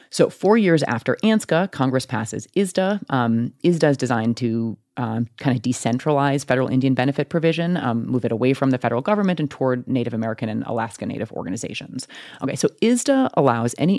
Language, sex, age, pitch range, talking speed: English, female, 30-49, 120-160 Hz, 175 wpm